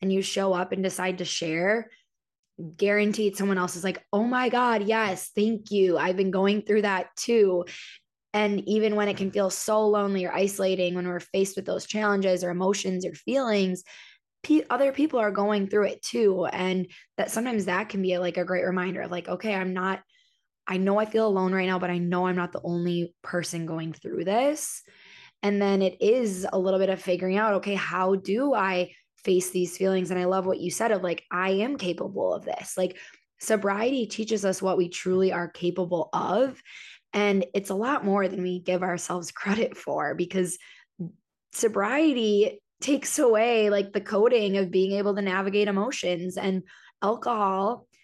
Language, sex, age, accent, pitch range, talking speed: English, female, 20-39, American, 185-215 Hz, 190 wpm